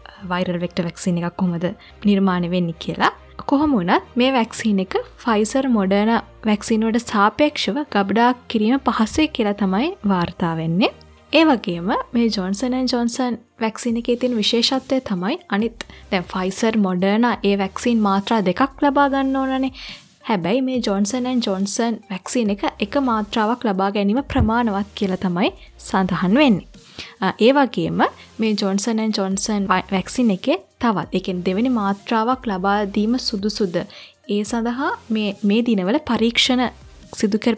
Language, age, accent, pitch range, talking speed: English, 20-39, Indian, 195-240 Hz, 120 wpm